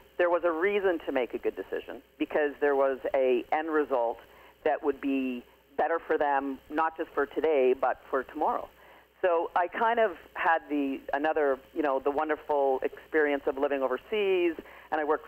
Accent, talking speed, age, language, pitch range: American, 180 wpm, 40-59, English, 135-165 Hz